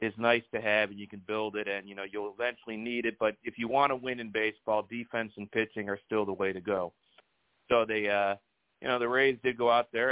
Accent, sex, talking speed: American, male, 260 wpm